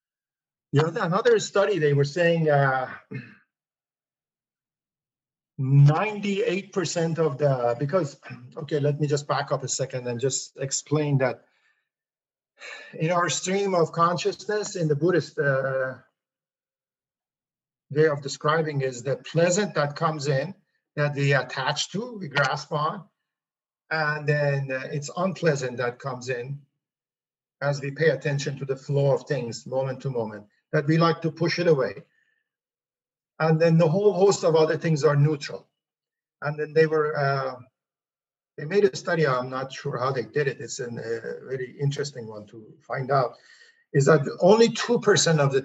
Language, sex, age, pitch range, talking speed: English, male, 50-69, 135-165 Hz, 150 wpm